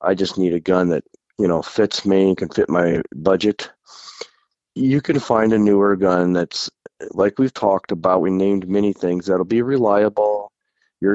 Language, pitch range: English, 90-105 Hz